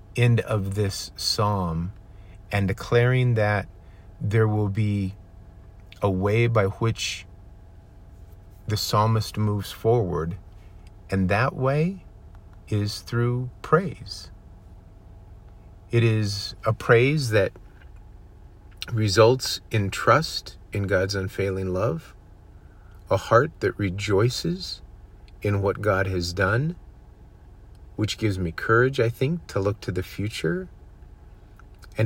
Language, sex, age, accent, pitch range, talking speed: English, male, 50-69, American, 90-105 Hz, 105 wpm